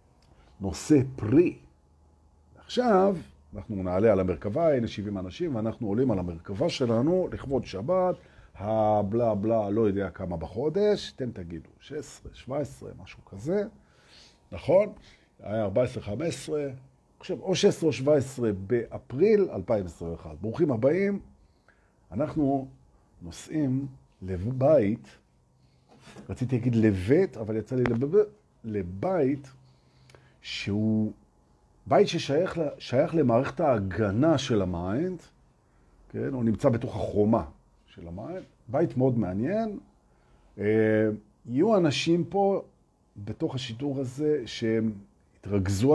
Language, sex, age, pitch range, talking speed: Hebrew, male, 50-69, 100-140 Hz, 100 wpm